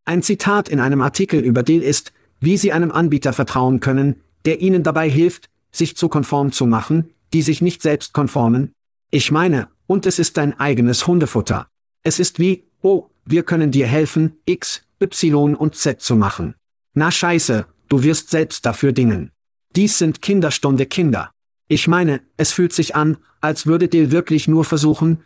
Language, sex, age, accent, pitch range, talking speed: German, male, 50-69, German, 135-170 Hz, 175 wpm